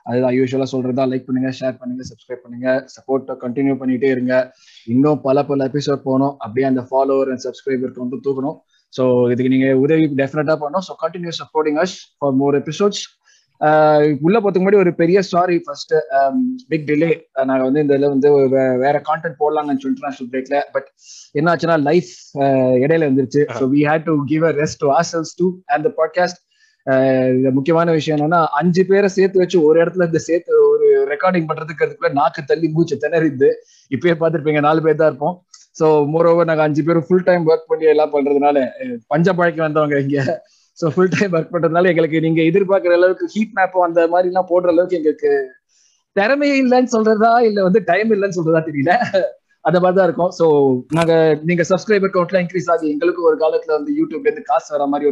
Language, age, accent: Tamil, 20-39, native